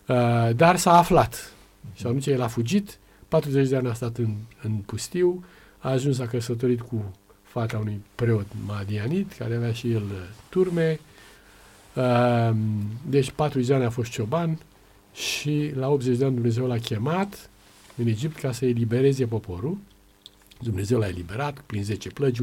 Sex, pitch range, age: male, 105-140 Hz, 50-69